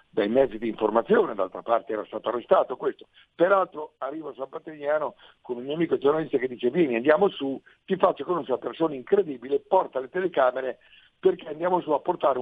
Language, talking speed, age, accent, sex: Italian, 190 wpm, 60-79, native, male